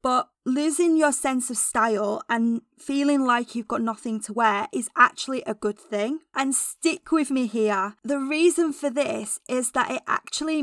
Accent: British